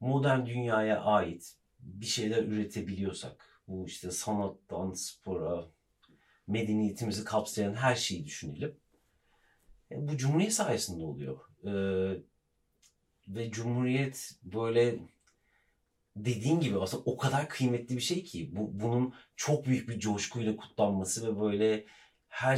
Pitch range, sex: 100-120 Hz, male